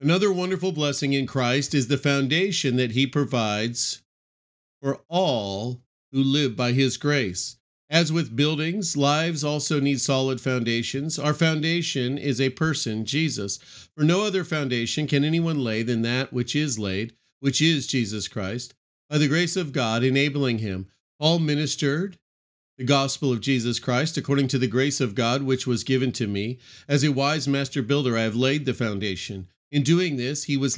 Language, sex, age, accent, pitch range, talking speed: English, male, 40-59, American, 115-145 Hz, 170 wpm